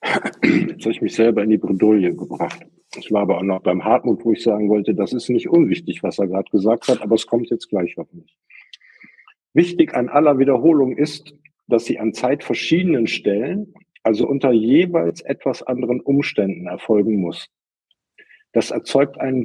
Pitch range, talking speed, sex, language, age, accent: 110-155 Hz, 180 wpm, male, German, 50-69, German